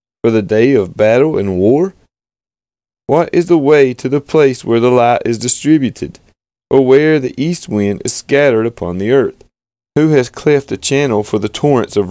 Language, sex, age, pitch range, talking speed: English, male, 30-49, 110-140 Hz, 190 wpm